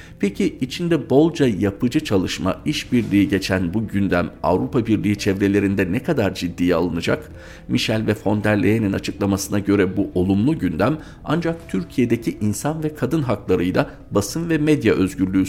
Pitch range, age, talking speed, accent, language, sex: 90-105 Hz, 50-69, 140 wpm, native, Turkish, male